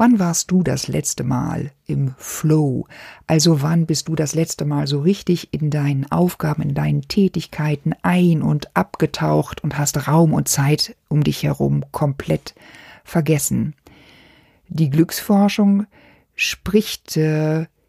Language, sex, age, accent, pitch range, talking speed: German, female, 50-69, German, 145-180 Hz, 135 wpm